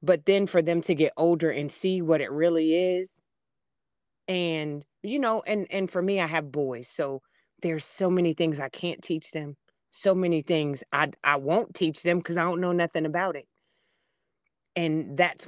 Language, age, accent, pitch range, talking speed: English, 30-49, American, 155-195 Hz, 190 wpm